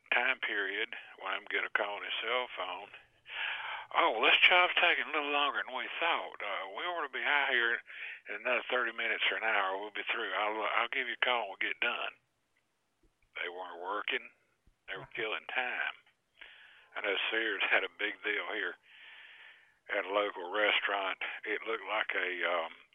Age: 50-69